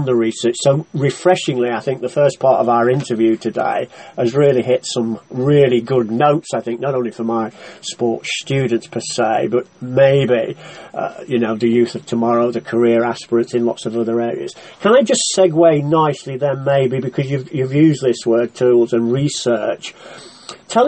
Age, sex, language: 40-59, male, English